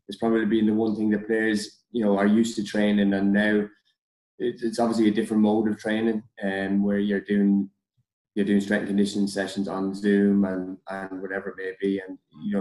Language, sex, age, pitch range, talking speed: English, male, 20-39, 95-105 Hz, 205 wpm